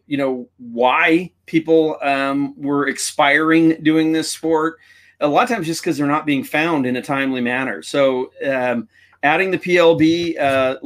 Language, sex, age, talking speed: English, male, 40-59, 165 wpm